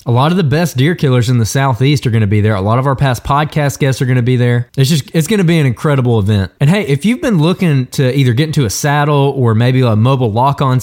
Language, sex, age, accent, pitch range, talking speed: English, male, 20-39, American, 120-155 Hz, 295 wpm